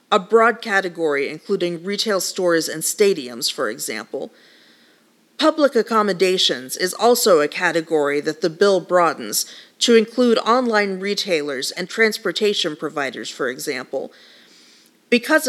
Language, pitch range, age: English, 165-220 Hz, 40-59